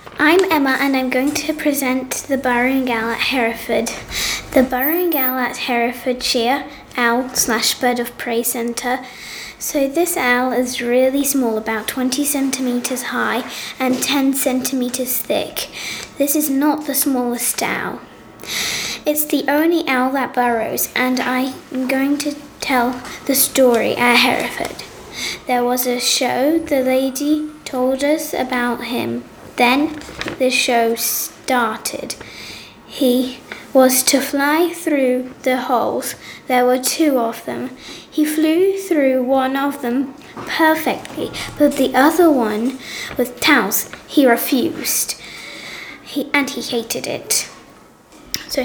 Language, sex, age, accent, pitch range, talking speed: French, female, 20-39, British, 245-290 Hz, 130 wpm